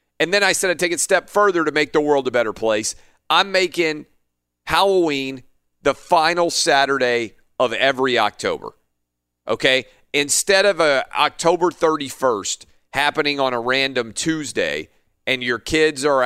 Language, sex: English, male